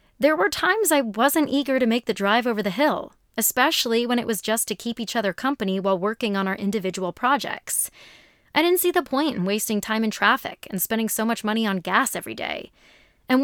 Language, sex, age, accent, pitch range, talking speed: English, female, 20-39, American, 195-260 Hz, 220 wpm